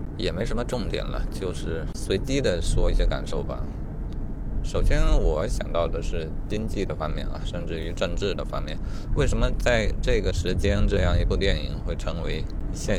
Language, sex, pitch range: Chinese, male, 90-115 Hz